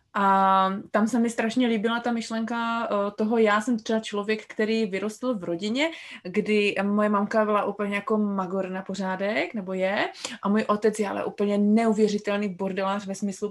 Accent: native